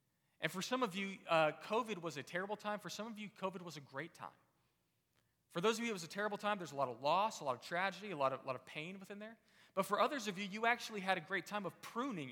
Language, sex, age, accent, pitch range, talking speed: English, male, 40-59, American, 140-195 Hz, 290 wpm